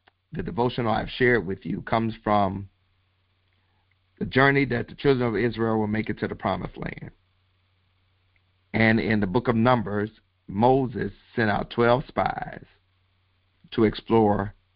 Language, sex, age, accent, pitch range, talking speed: English, male, 50-69, American, 95-110 Hz, 140 wpm